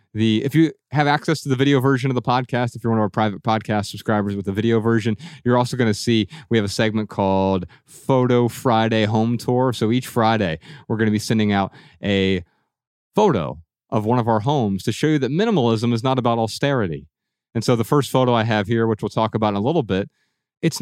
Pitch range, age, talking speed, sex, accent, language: 100-130 Hz, 30-49, 230 wpm, male, American, English